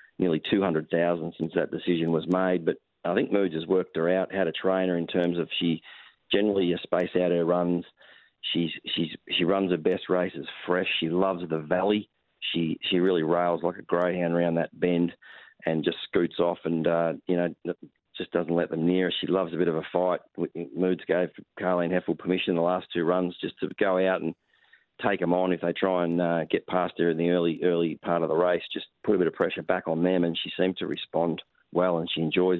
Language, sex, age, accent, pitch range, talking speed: English, male, 40-59, Australian, 85-90 Hz, 230 wpm